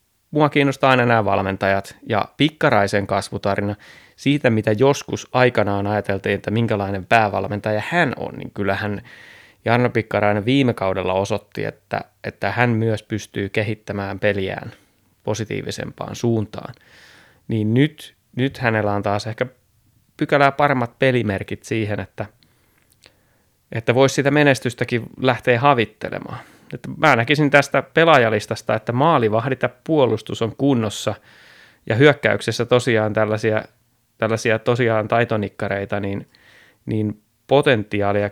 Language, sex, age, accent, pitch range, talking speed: Finnish, male, 20-39, native, 105-125 Hz, 110 wpm